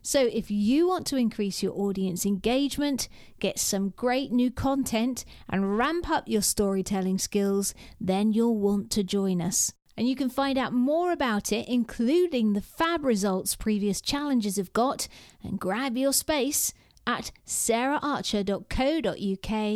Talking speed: 145 wpm